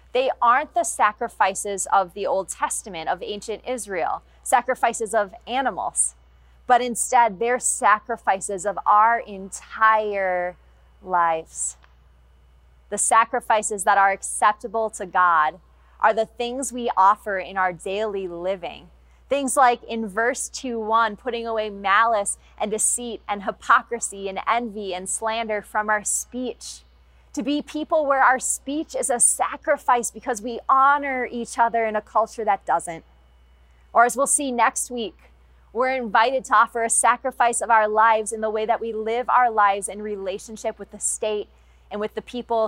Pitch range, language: 195-240 Hz, English